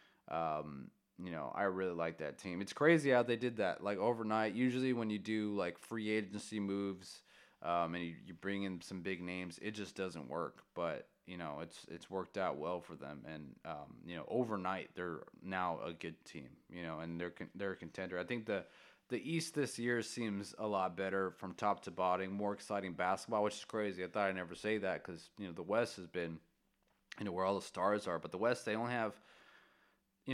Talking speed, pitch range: 225 wpm, 90-110 Hz